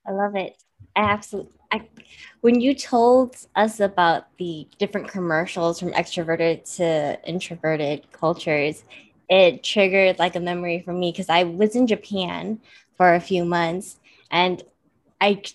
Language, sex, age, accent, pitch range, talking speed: English, female, 20-39, American, 165-190 Hz, 135 wpm